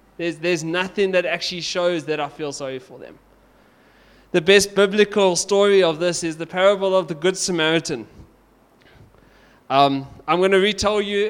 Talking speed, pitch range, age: 165 wpm, 160-190 Hz, 20-39